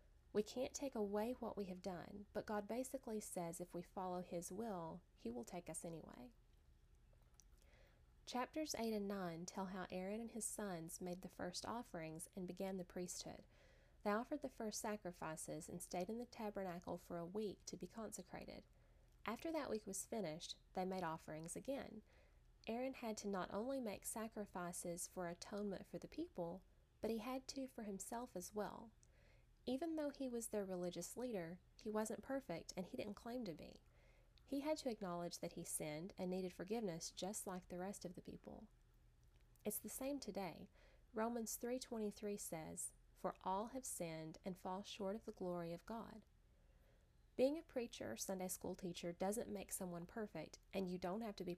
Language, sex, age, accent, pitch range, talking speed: English, female, 30-49, American, 175-225 Hz, 180 wpm